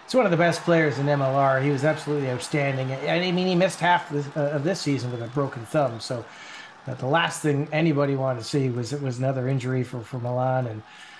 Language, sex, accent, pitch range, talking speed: English, male, American, 135-165 Hz, 240 wpm